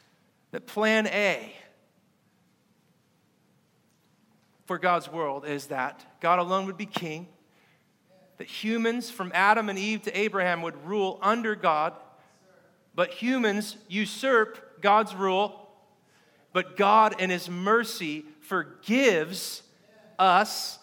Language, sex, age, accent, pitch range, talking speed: English, male, 40-59, American, 160-200 Hz, 105 wpm